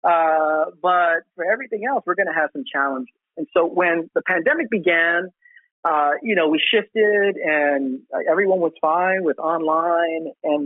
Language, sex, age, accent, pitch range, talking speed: English, male, 40-59, American, 140-180 Hz, 165 wpm